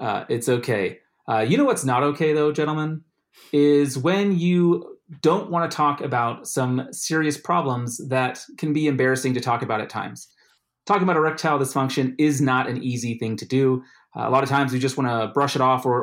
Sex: male